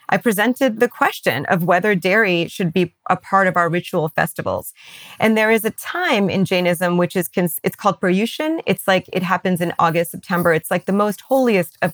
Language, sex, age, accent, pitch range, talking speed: English, female, 30-49, American, 175-210 Hz, 200 wpm